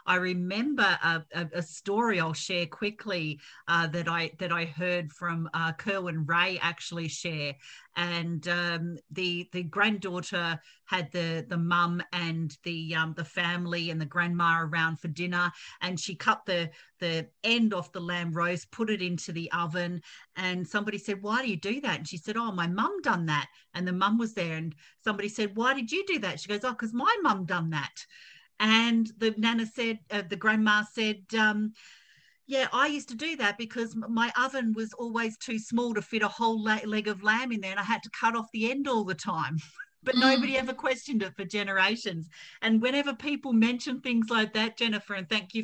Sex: female